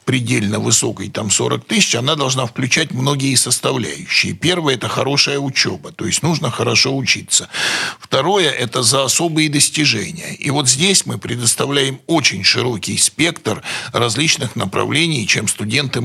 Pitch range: 110-145 Hz